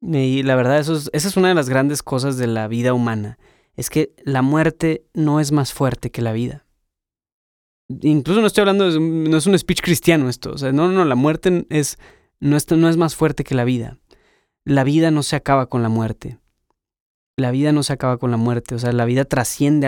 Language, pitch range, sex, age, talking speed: Spanish, 125-150 Hz, male, 20-39, 230 wpm